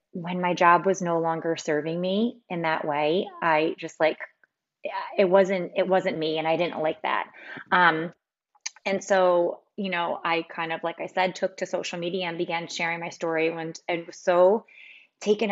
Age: 30-49